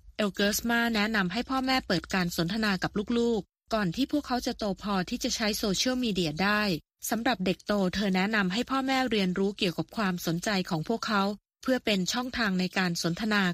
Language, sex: Thai, female